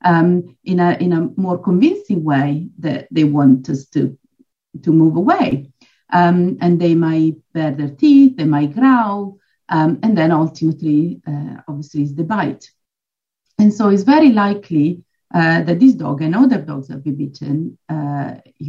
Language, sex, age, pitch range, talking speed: English, female, 50-69, 160-210 Hz, 165 wpm